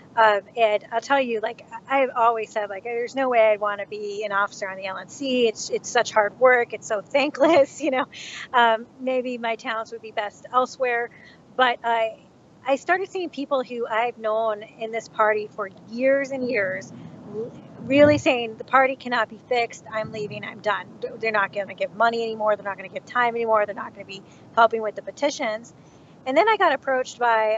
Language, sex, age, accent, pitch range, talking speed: English, female, 30-49, American, 210-255 Hz, 210 wpm